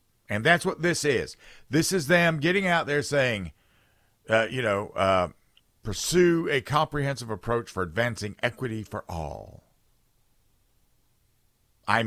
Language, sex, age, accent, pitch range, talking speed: English, male, 50-69, American, 95-140 Hz, 130 wpm